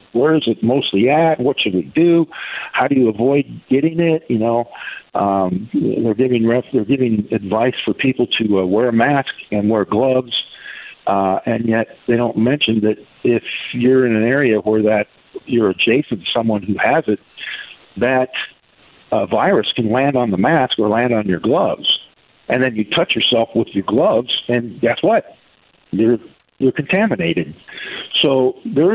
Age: 50-69